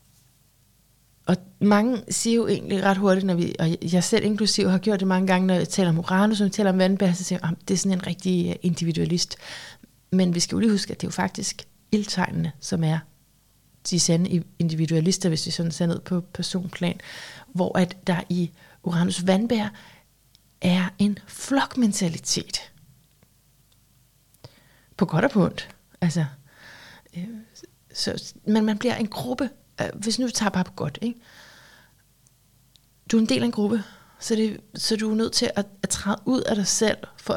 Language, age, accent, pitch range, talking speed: Danish, 30-49, native, 170-210 Hz, 180 wpm